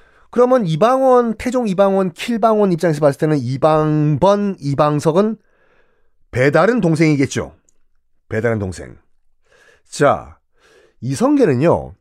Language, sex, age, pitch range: Korean, male, 40-59, 135-220 Hz